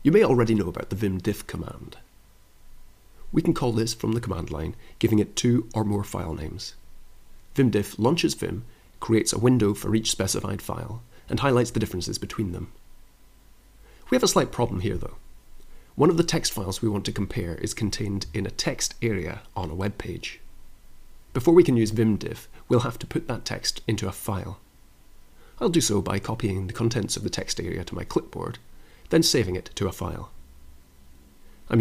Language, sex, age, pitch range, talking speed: English, male, 30-49, 90-115 Hz, 190 wpm